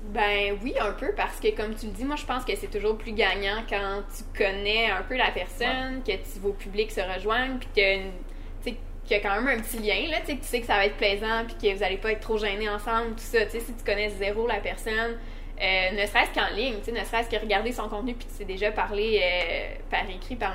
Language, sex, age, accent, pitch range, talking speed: English, female, 20-39, Canadian, 200-230 Hz, 265 wpm